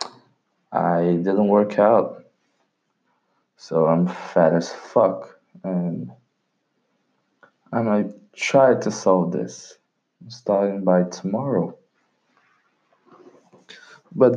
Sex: male